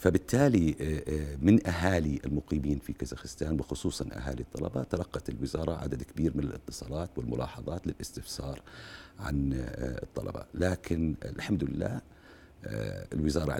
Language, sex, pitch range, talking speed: Arabic, male, 70-90 Hz, 100 wpm